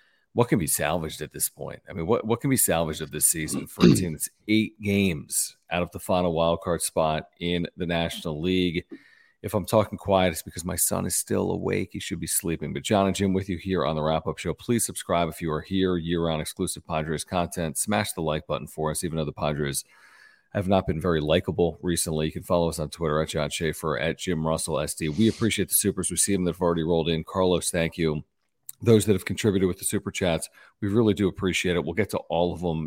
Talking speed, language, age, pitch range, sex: 240 wpm, English, 40-59, 80-100 Hz, male